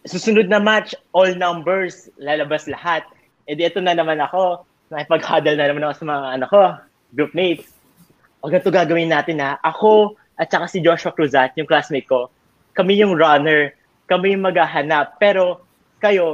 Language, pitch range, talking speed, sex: Filipino, 155-205 Hz, 145 wpm, male